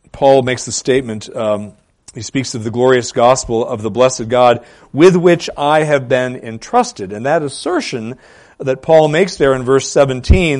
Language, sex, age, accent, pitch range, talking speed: English, male, 40-59, American, 125-160 Hz, 175 wpm